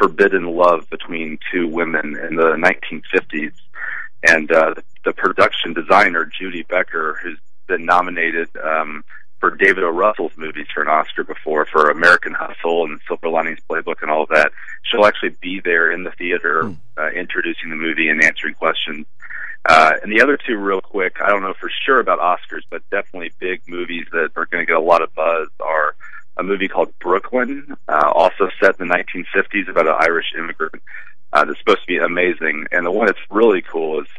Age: 40-59